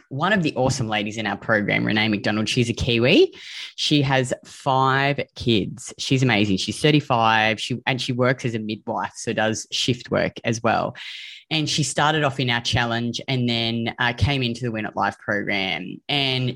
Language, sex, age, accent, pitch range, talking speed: English, female, 20-39, Australian, 110-130 Hz, 190 wpm